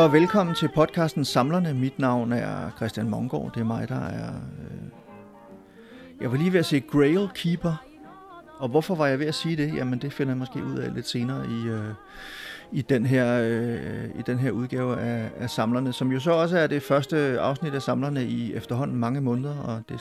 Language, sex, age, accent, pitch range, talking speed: Danish, male, 30-49, native, 120-155 Hz, 200 wpm